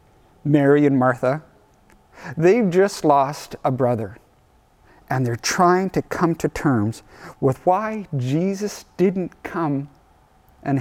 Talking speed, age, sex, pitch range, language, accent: 115 wpm, 50-69, male, 120-185 Hz, English, American